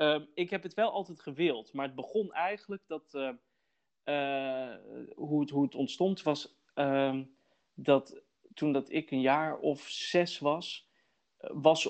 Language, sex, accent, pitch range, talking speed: Dutch, male, Dutch, 125-155 Hz, 160 wpm